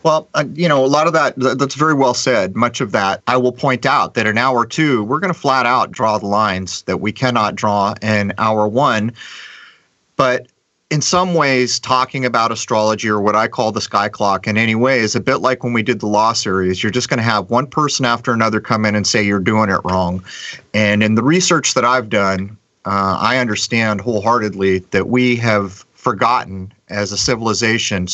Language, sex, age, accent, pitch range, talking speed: English, male, 30-49, American, 110-140 Hz, 210 wpm